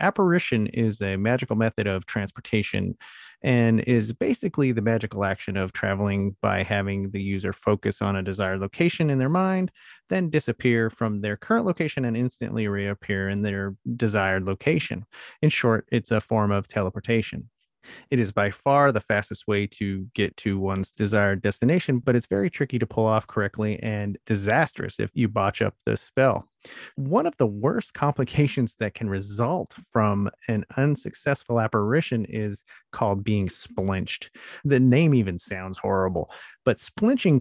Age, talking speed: 30-49, 160 wpm